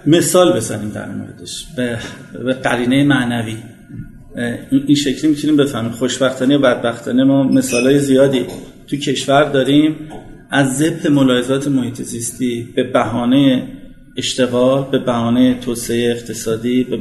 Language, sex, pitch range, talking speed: Persian, male, 125-150 Hz, 125 wpm